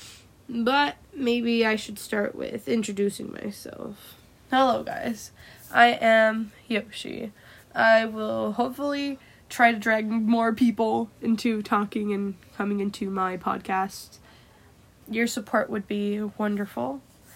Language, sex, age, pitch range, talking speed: English, female, 10-29, 205-235 Hz, 115 wpm